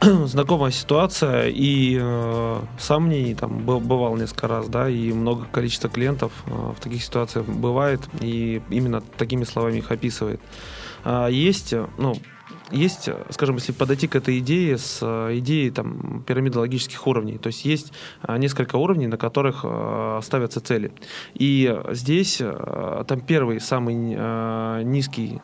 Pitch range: 115-140 Hz